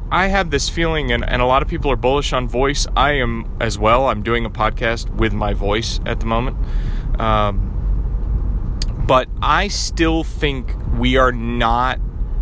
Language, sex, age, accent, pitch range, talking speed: English, male, 30-49, American, 105-120 Hz, 175 wpm